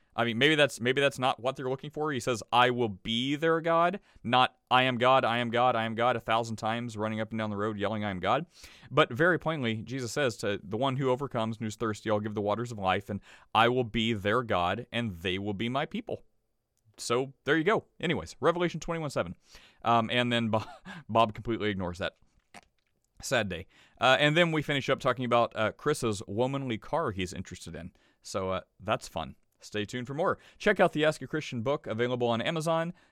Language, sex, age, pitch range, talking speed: English, male, 30-49, 105-130 Hz, 225 wpm